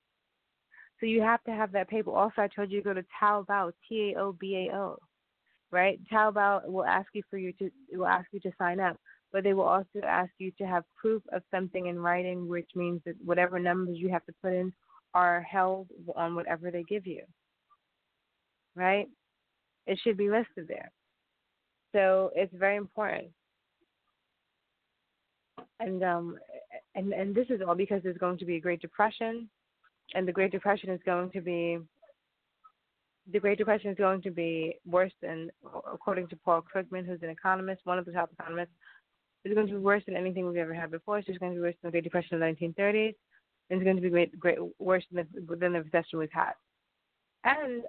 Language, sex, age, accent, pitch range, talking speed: English, female, 20-39, American, 175-200 Hz, 200 wpm